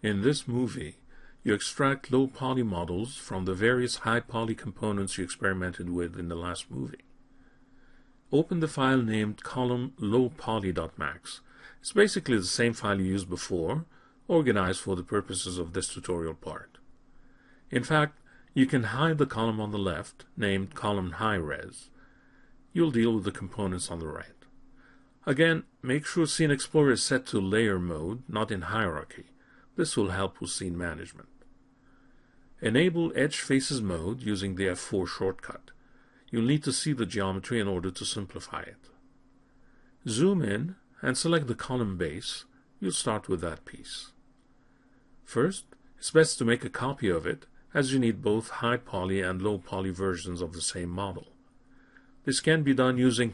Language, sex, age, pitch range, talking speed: English, male, 50-69, 95-135 Hz, 155 wpm